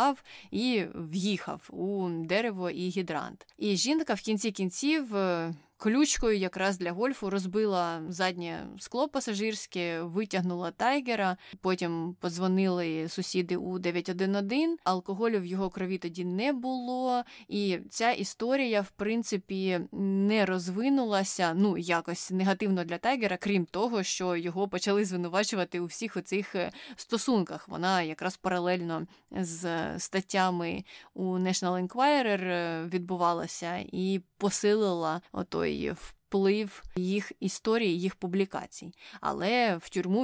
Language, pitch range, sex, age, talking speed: Ukrainian, 180-215 Hz, female, 20-39, 115 wpm